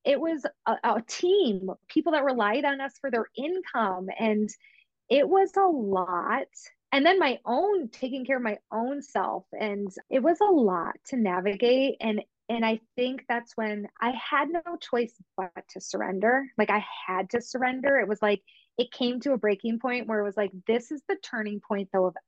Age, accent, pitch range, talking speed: 20-39, American, 200-270 Hz, 195 wpm